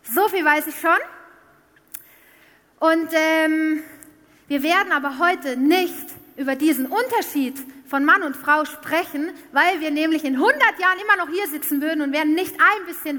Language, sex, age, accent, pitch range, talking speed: German, female, 30-49, German, 270-335 Hz, 165 wpm